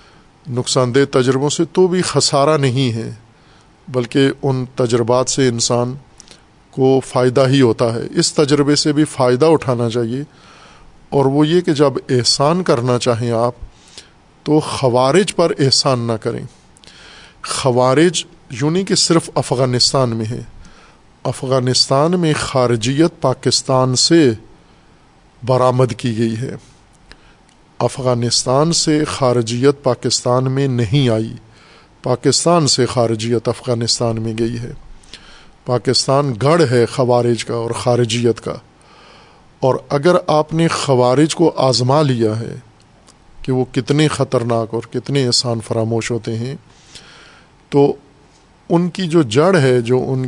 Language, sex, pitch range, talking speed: Urdu, male, 120-145 Hz, 125 wpm